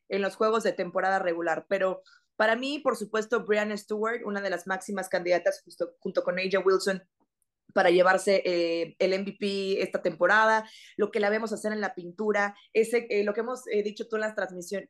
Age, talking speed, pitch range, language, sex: 20-39, 195 wpm, 185-220 Hz, Spanish, female